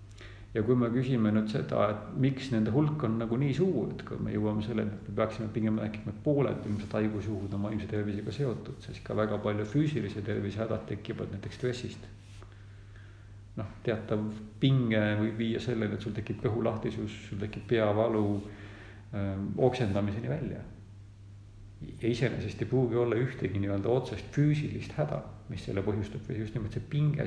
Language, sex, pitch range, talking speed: English, male, 100-120 Hz, 165 wpm